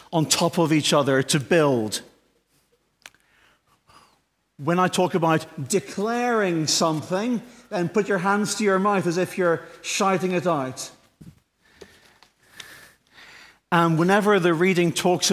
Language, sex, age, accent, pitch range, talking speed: English, male, 40-59, British, 155-205 Hz, 120 wpm